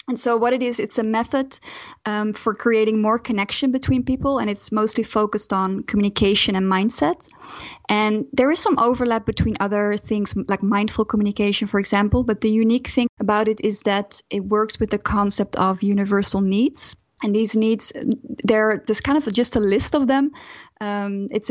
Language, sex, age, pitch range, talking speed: English, female, 20-39, 205-240 Hz, 180 wpm